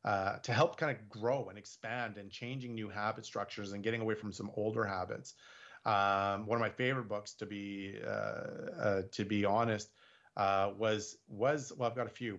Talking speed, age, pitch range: 200 wpm, 30-49, 105-125 Hz